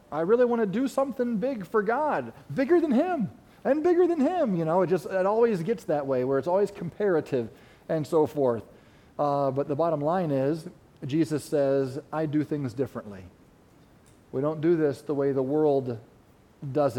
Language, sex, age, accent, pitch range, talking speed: English, male, 40-59, American, 125-165 Hz, 185 wpm